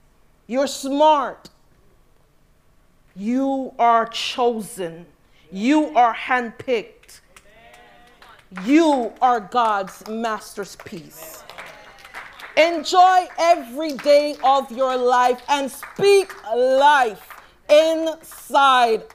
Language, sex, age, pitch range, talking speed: English, female, 40-59, 195-270 Hz, 70 wpm